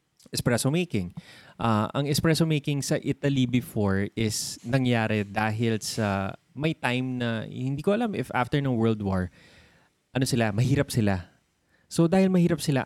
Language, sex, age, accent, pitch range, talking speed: Filipino, male, 20-39, native, 105-135 Hz, 150 wpm